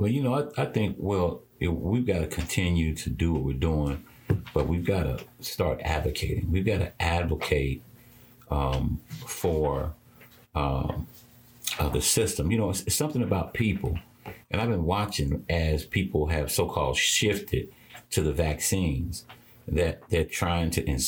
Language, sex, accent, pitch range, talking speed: English, male, American, 75-95 Hz, 160 wpm